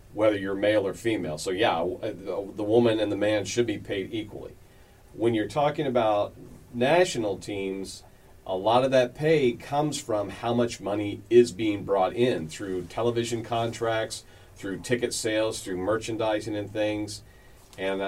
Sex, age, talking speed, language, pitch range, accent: male, 40-59, 155 wpm, English, 95-120 Hz, American